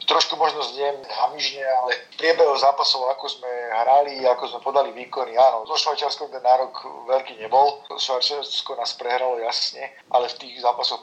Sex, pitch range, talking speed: male, 120-135 Hz, 160 wpm